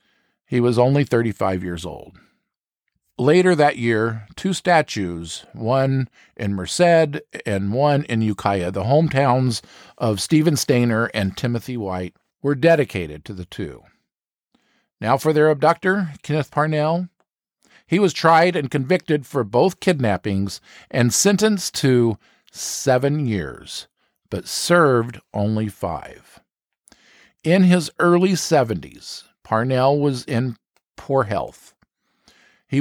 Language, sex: English, male